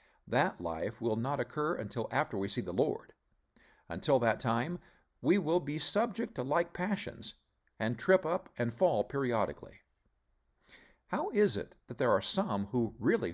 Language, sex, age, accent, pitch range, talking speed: English, male, 50-69, American, 105-150 Hz, 160 wpm